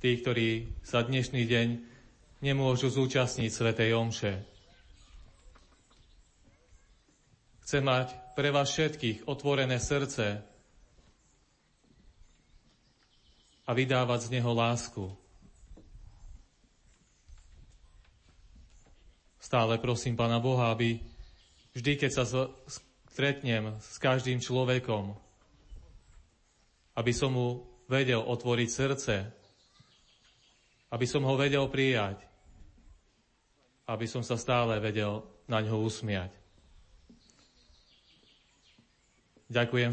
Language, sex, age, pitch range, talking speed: Slovak, male, 30-49, 100-125 Hz, 80 wpm